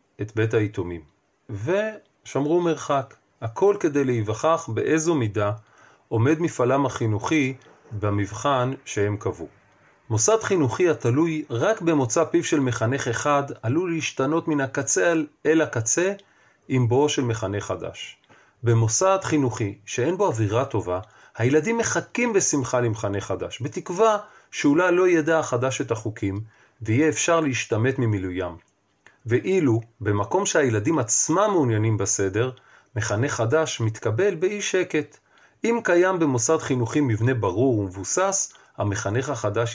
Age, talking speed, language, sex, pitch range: 40-59, 120 wpm, Hebrew, male, 110-160 Hz